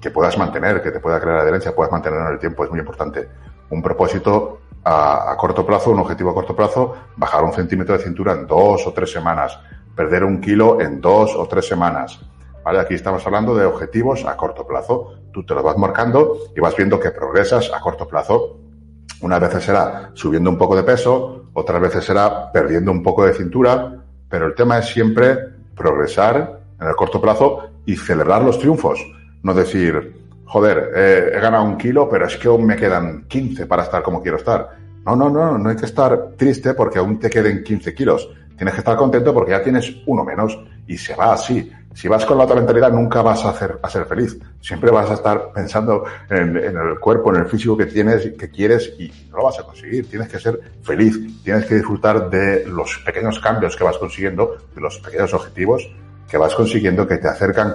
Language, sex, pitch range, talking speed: Spanish, male, 95-125 Hz, 210 wpm